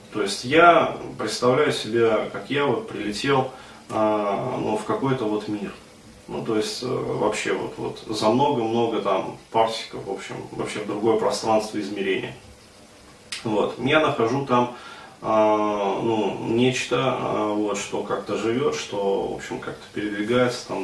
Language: Russian